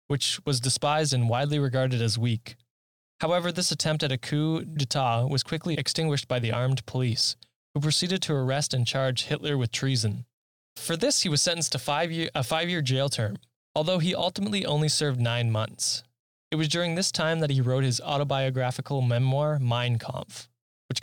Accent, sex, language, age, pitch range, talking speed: American, male, English, 10-29, 125-150 Hz, 185 wpm